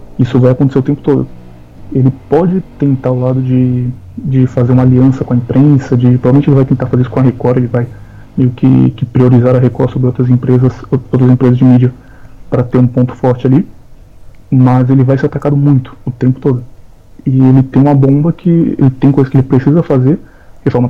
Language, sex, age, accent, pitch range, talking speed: Portuguese, male, 20-39, Brazilian, 125-140 Hz, 210 wpm